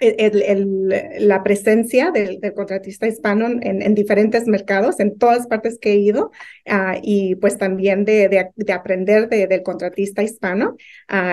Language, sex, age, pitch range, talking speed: English, female, 30-49, 190-220 Hz, 165 wpm